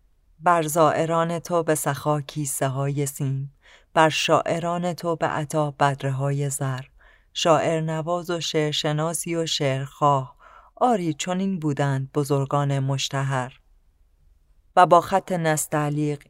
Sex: female